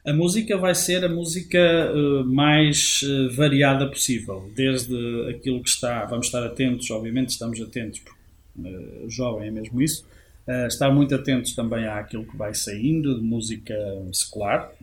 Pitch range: 115-135 Hz